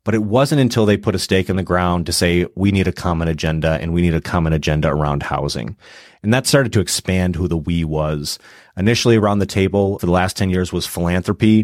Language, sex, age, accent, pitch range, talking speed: English, male, 30-49, American, 90-110 Hz, 235 wpm